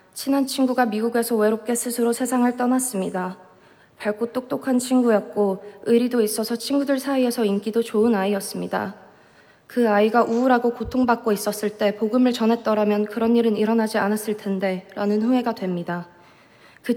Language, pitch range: Korean, 205-245 Hz